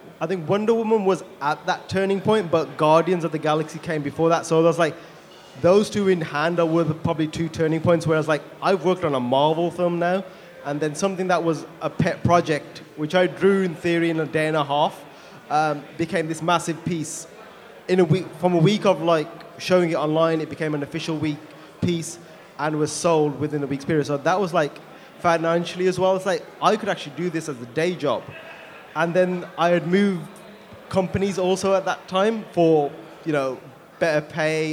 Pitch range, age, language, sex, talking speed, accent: 150-180 Hz, 20-39, English, male, 215 wpm, British